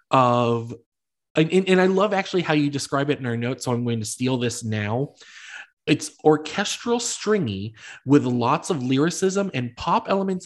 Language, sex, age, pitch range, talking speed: English, male, 20-39, 120-160 Hz, 170 wpm